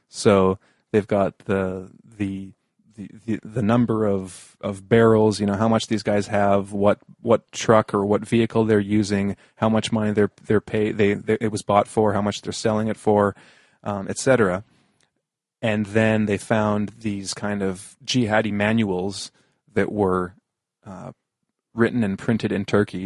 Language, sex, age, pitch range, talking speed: English, male, 30-49, 105-125 Hz, 165 wpm